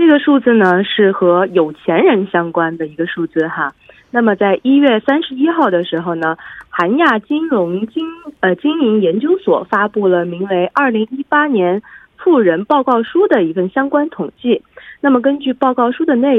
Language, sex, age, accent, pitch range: Korean, female, 20-39, Chinese, 175-275 Hz